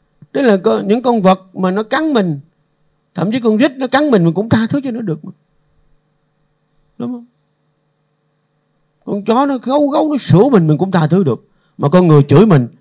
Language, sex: Vietnamese, male